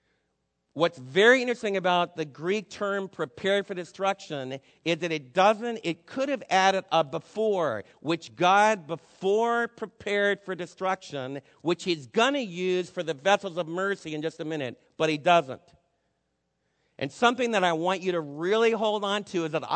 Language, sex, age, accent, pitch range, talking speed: English, male, 50-69, American, 155-200 Hz, 170 wpm